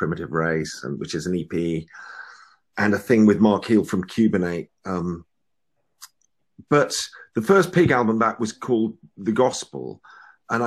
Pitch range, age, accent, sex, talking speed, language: 95-125 Hz, 40-59, British, male, 150 wpm, English